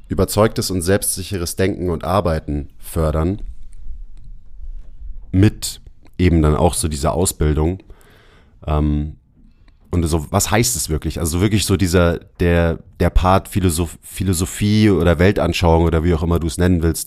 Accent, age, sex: German, 30-49, male